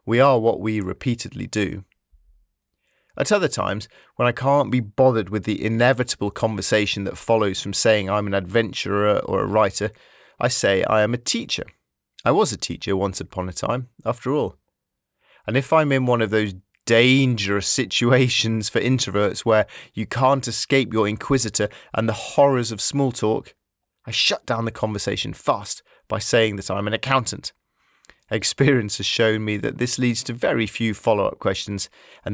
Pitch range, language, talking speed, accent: 105-125 Hz, English, 170 wpm, British